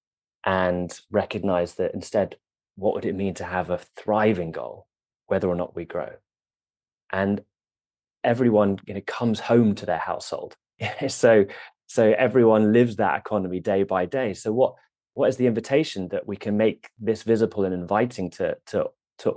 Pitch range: 95-115 Hz